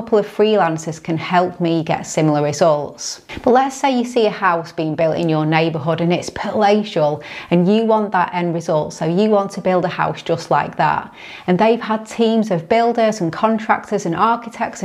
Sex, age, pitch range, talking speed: female, 30-49, 160-205 Hz, 205 wpm